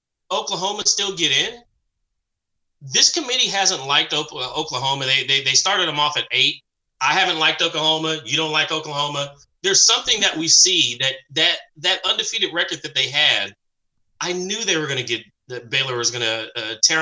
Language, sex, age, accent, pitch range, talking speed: English, male, 30-49, American, 130-190 Hz, 185 wpm